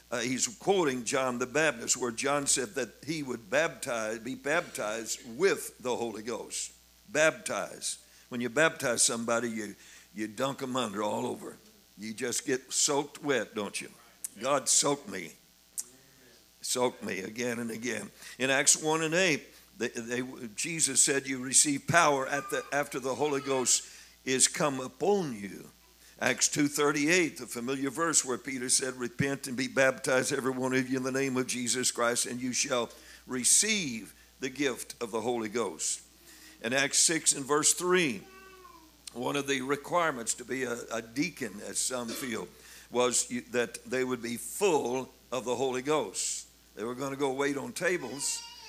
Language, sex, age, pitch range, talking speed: English, male, 60-79, 120-145 Hz, 170 wpm